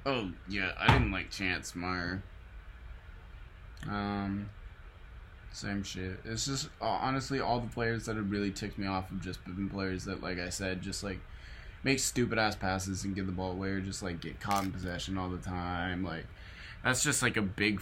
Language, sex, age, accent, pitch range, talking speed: English, male, 20-39, American, 90-105 Hz, 190 wpm